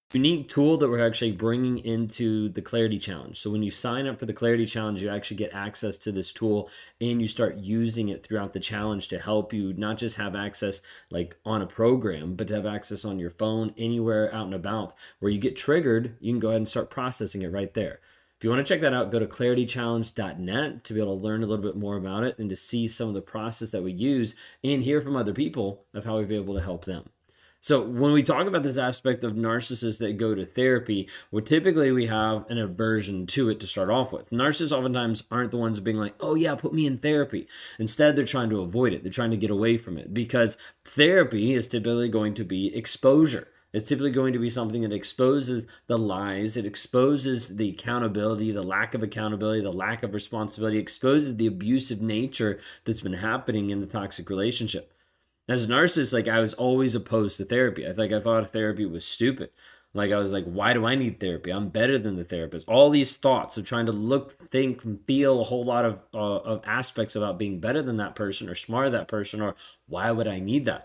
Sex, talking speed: male, 230 wpm